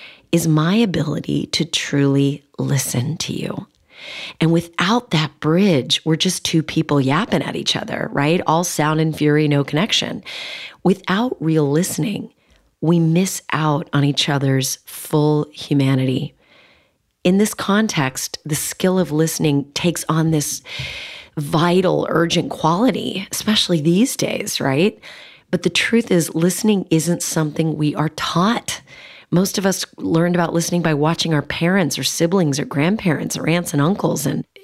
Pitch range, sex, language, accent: 145-180 Hz, female, English, American